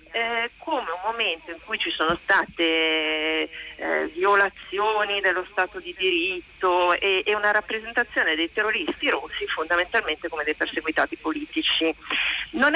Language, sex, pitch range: Italian, female, 165-230 Hz